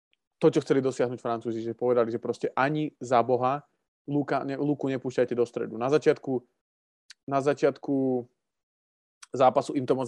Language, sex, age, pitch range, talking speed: Slovak, male, 20-39, 120-140 Hz, 150 wpm